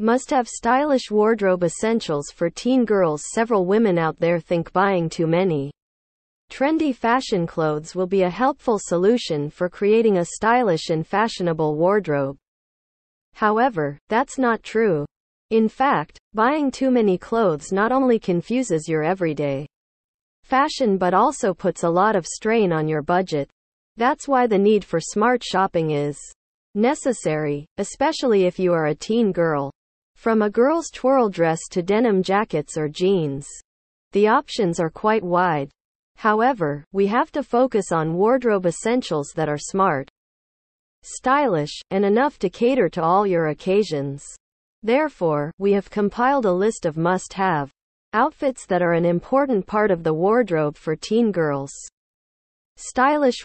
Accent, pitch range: American, 165-230 Hz